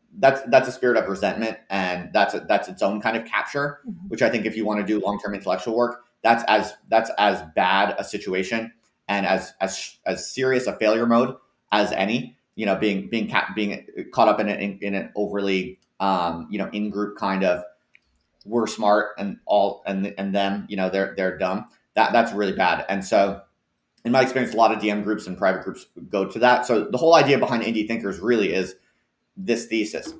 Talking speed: 215 wpm